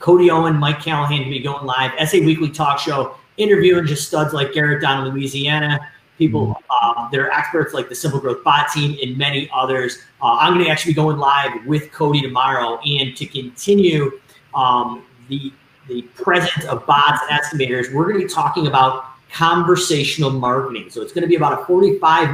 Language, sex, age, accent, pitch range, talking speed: English, male, 30-49, American, 130-155 Hz, 185 wpm